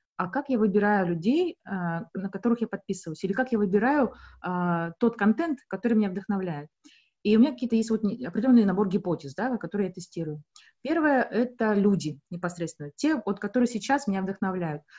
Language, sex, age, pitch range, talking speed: Russian, female, 20-39, 180-240 Hz, 170 wpm